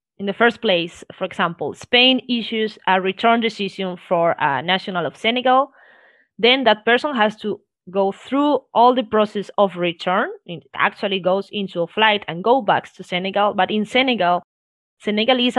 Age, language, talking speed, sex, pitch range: 20-39, English, 165 wpm, female, 190-230 Hz